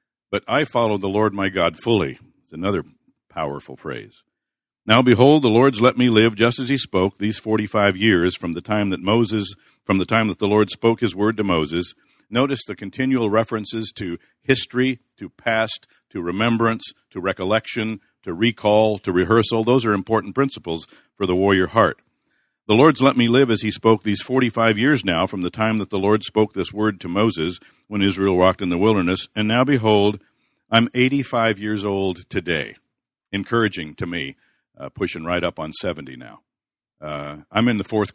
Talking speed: 185 wpm